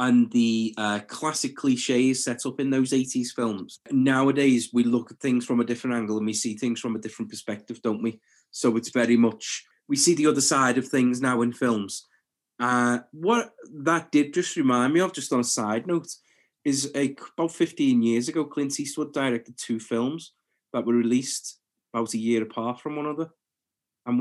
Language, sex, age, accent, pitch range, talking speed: English, male, 20-39, British, 120-150 Hz, 195 wpm